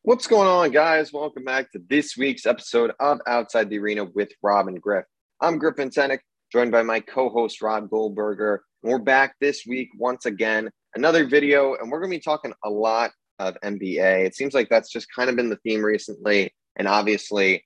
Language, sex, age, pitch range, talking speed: English, male, 20-39, 100-120 Hz, 195 wpm